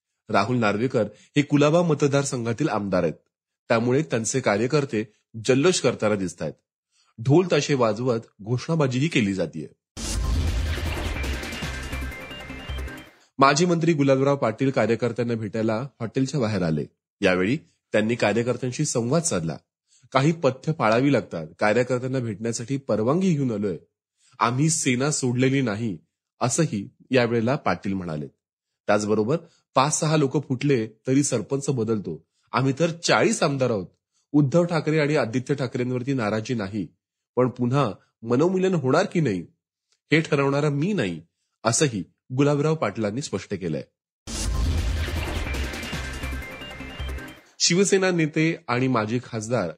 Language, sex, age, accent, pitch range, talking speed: Marathi, male, 30-49, native, 100-145 Hz, 90 wpm